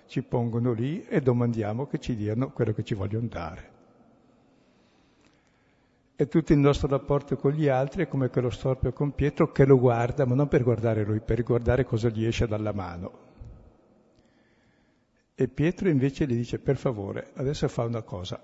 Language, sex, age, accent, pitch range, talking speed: Italian, male, 60-79, native, 110-140 Hz, 175 wpm